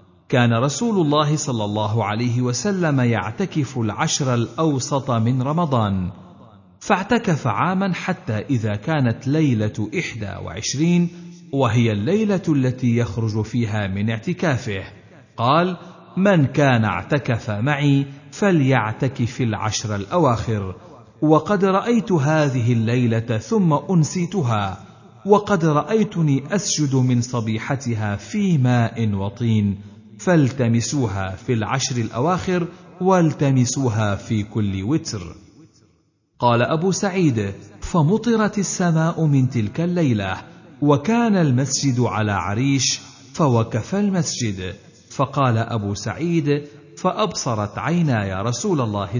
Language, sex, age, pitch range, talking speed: Arabic, male, 50-69, 110-160 Hz, 95 wpm